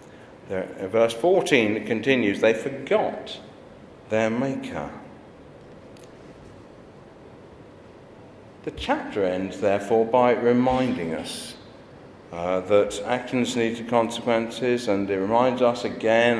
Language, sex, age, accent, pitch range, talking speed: English, male, 50-69, British, 105-130 Hz, 90 wpm